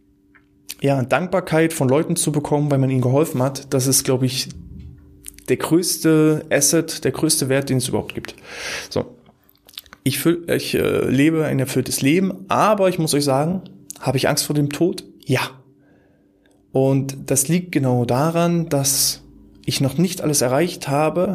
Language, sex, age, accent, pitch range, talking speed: German, male, 20-39, German, 130-155 Hz, 165 wpm